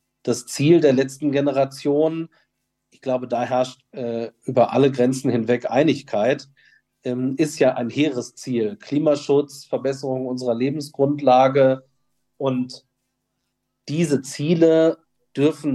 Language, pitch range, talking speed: German, 125-150 Hz, 105 wpm